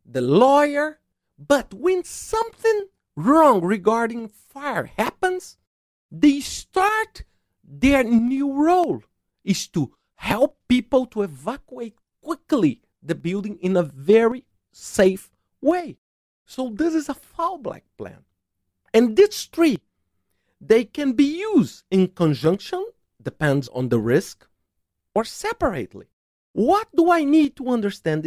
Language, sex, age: English, male, 50-69